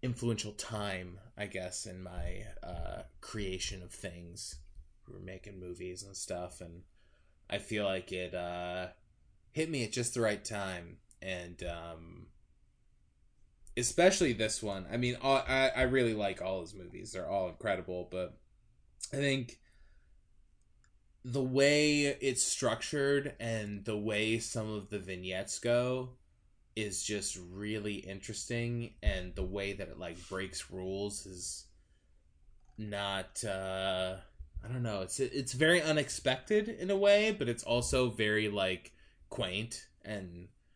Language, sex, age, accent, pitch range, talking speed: English, male, 20-39, American, 90-120 Hz, 140 wpm